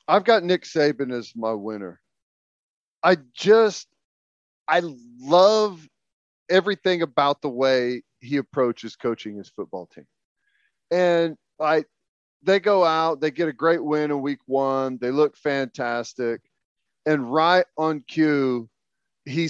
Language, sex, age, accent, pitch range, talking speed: English, male, 40-59, American, 125-160 Hz, 130 wpm